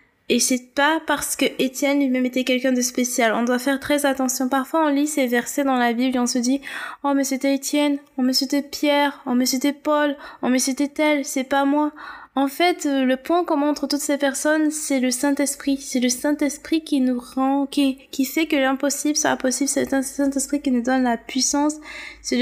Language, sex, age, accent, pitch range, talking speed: French, female, 20-39, French, 250-290 Hz, 225 wpm